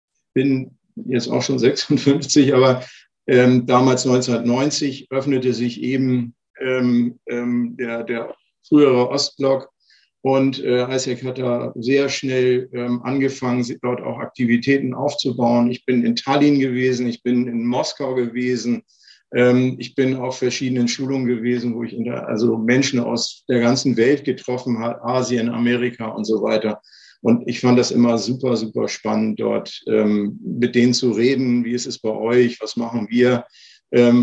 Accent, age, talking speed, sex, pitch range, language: German, 50-69, 155 wpm, male, 120-130 Hz, German